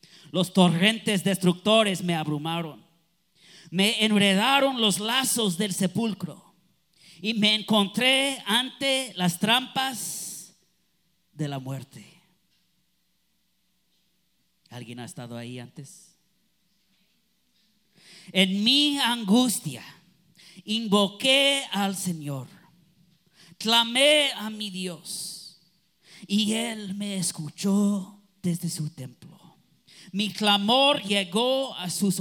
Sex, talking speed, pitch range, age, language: male, 90 wpm, 175-215 Hz, 40-59, Spanish